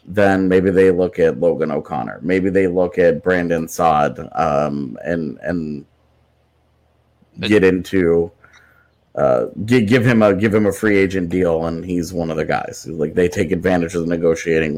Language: English